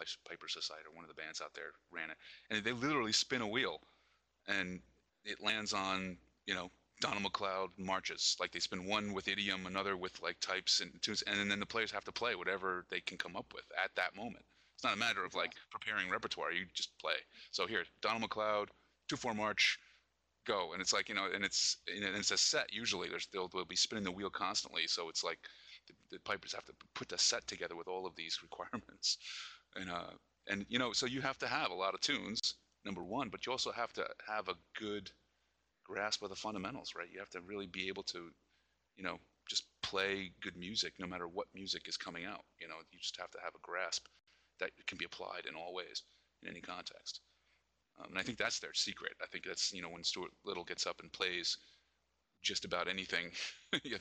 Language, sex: English, male